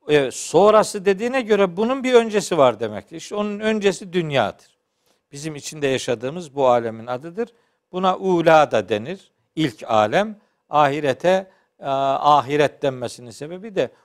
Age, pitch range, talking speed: 60-79, 150-225 Hz, 125 wpm